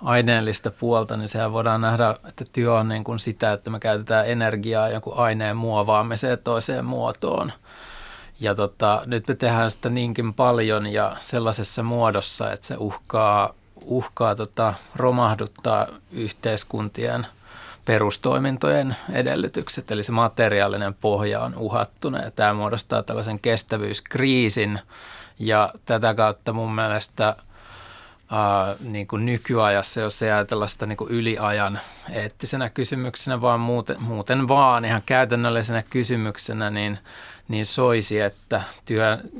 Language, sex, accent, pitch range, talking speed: Finnish, male, native, 105-120 Hz, 125 wpm